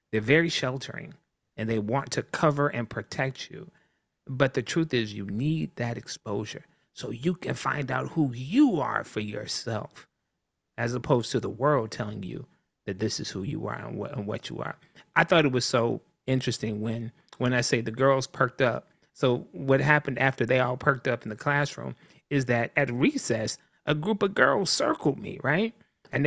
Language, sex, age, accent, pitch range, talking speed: English, male, 30-49, American, 130-170 Hz, 190 wpm